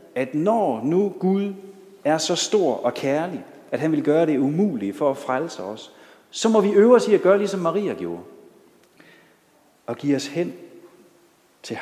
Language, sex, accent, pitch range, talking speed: Danish, male, native, 135-200 Hz, 180 wpm